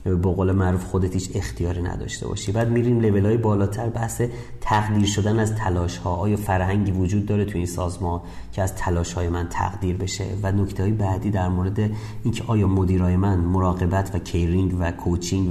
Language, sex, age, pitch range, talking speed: Persian, male, 30-49, 95-115 Hz, 190 wpm